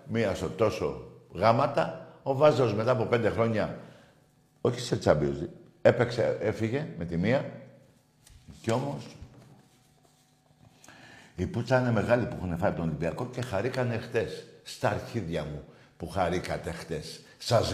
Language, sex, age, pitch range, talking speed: Greek, male, 60-79, 115-140 Hz, 130 wpm